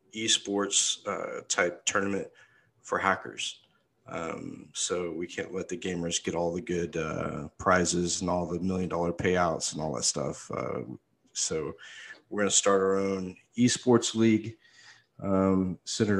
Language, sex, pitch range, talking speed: English, male, 90-105 Hz, 150 wpm